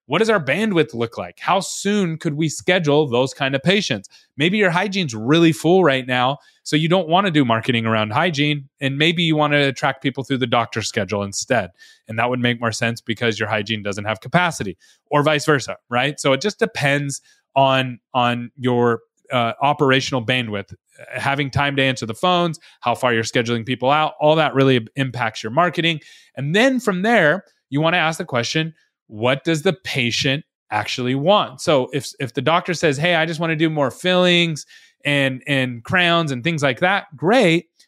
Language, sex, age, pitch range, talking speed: English, male, 30-49, 125-170 Hz, 200 wpm